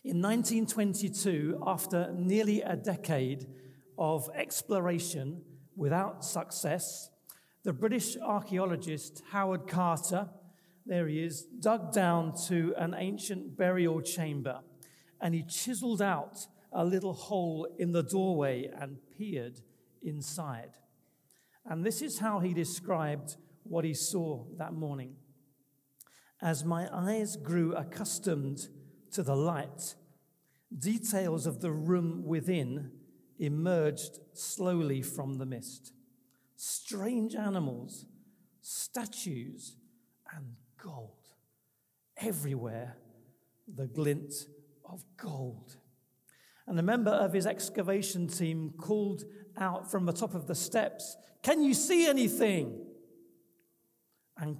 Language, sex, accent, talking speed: English, male, British, 105 wpm